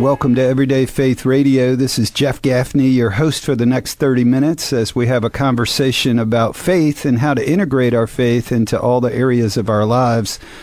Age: 50-69